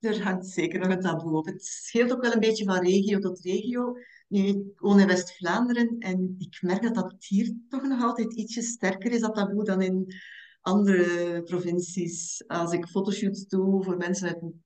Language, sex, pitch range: Dutch, female, 185-210 Hz